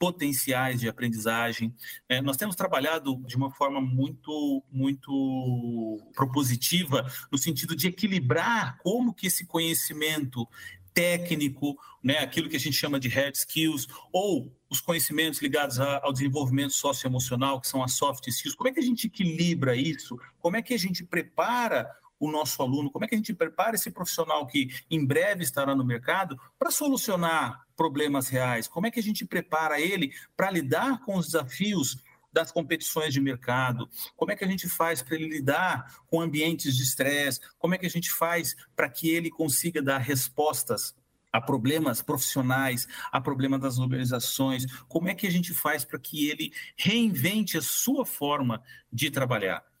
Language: Portuguese